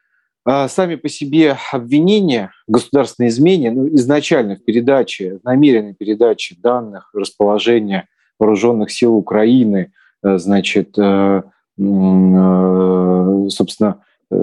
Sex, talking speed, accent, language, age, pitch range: male, 85 wpm, native, Russian, 40-59, 100-135 Hz